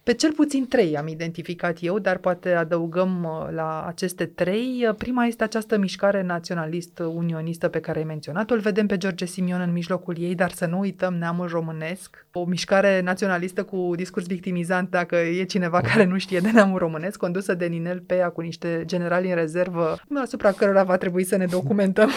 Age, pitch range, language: 30-49, 170-215 Hz, Romanian